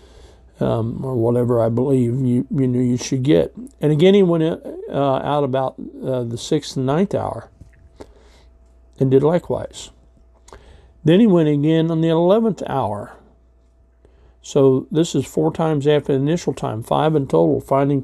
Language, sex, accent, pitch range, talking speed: English, male, American, 110-140 Hz, 155 wpm